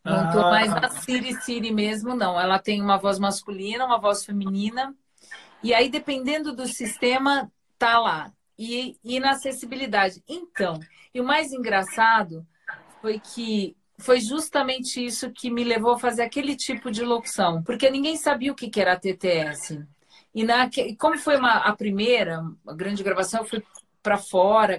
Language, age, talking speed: Portuguese, 40-59, 160 wpm